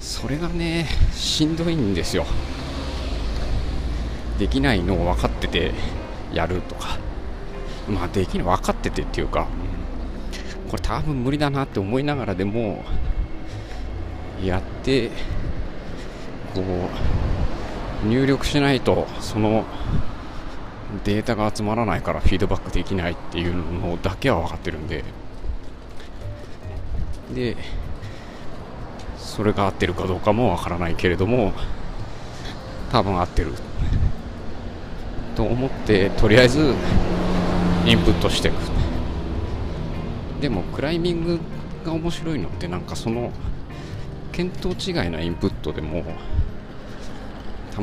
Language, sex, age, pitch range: Japanese, male, 40-59, 85-110 Hz